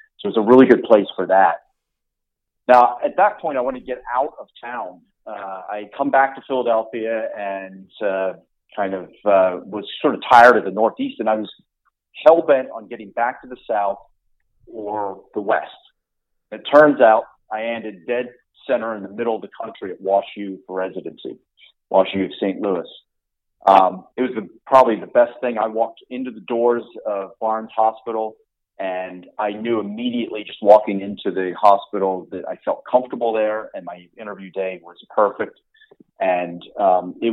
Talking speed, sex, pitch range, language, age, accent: 180 wpm, male, 95-120 Hz, English, 40-59, American